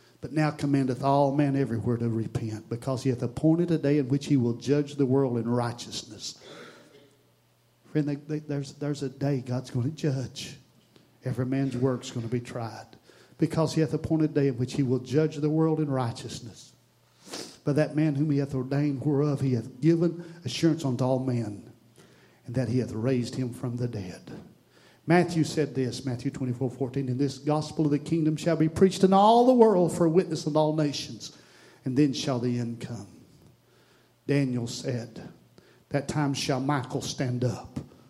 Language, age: English, 40-59